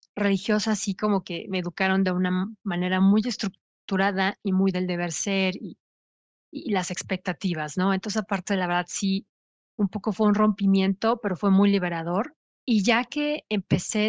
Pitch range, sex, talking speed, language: 185-215 Hz, female, 170 wpm, Spanish